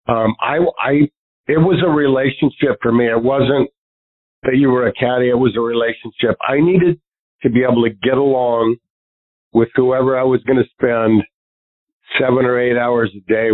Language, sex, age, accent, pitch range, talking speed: English, male, 50-69, American, 110-130 Hz, 170 wpm